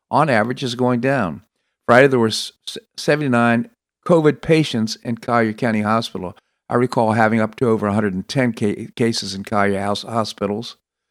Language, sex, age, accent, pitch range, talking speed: English, male, 50-69, American, 105-130 Hz, 150 wpm